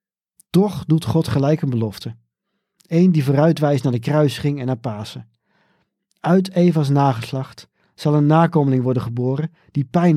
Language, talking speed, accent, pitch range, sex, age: Dutch, 155 wpm, Dutch, 120-165 Hz, male, 50-69